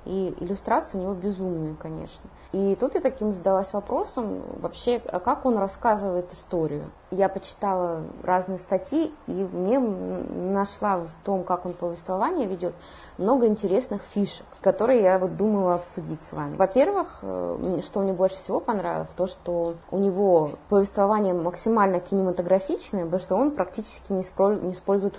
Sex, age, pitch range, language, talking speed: female, 20-39, 175-200 Hz, Russian, 150 wpm